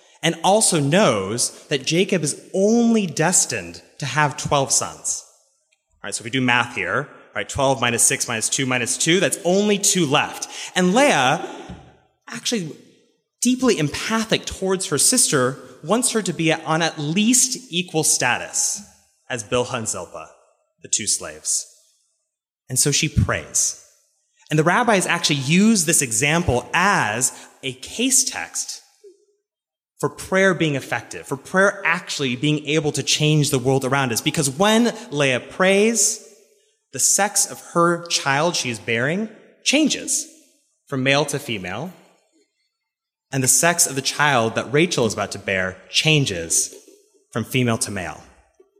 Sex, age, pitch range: male, 30-49, 130-210 Hz